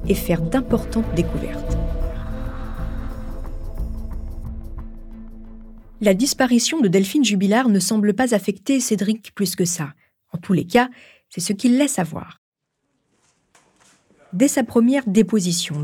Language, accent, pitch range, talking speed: French, French, 170-230 Hz, 115 wpm